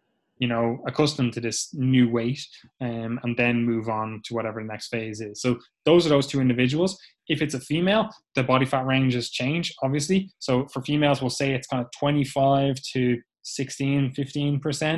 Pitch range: 120-140 Hz